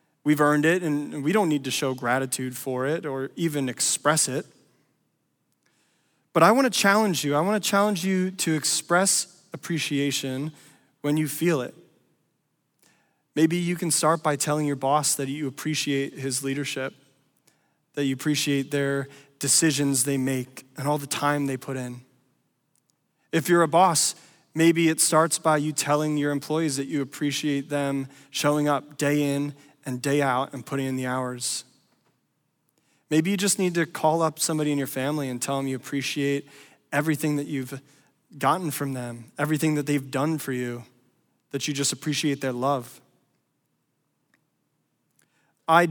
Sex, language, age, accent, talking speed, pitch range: male, English, 20-39, American, 160 wpm, 135-160 Hz